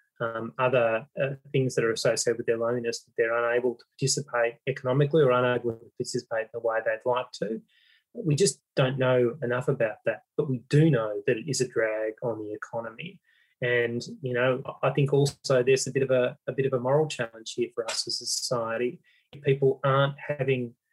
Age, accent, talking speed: 20-39, Australian, 205 wpm